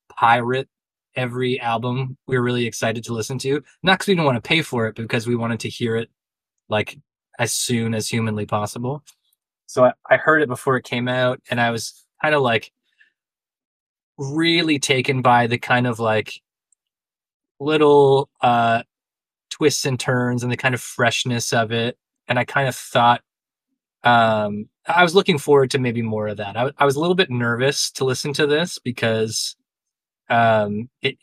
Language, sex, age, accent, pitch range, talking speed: English, male, 20-39, American, 115-135 Hz, 185 wpm